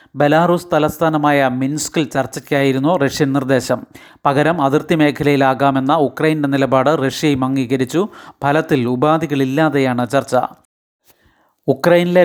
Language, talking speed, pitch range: Malayalam, 85 wpm, 135-155 Hz